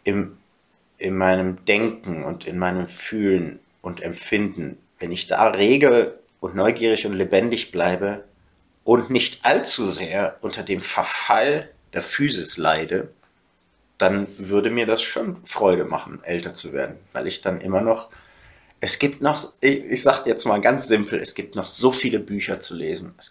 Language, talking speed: German, 160 wpm